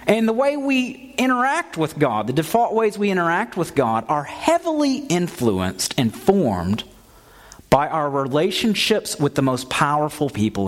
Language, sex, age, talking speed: English, male, 40-59, 150 wpm